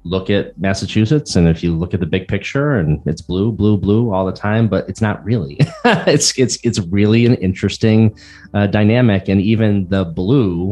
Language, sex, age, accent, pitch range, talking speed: English, male, 30-49, American, 80-100 Hz, 195 wpm